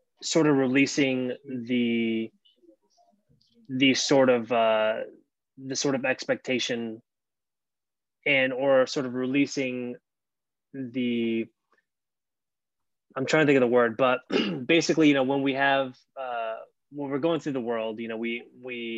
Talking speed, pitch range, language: 135 wpm, 115-135 Hz, English